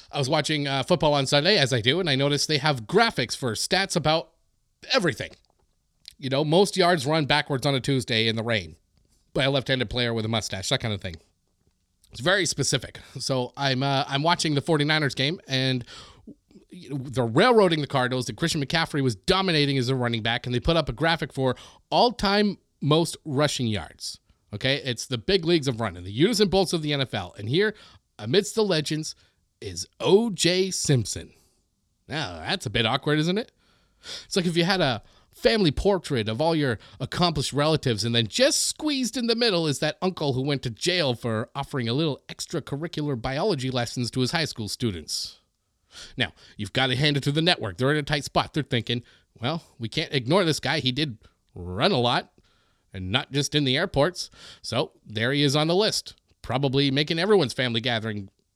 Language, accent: English, American